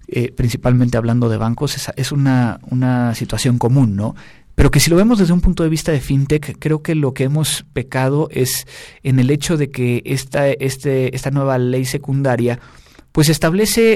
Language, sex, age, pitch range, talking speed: Spanish, male, 40-59, 130-165 Hz, 185 wpm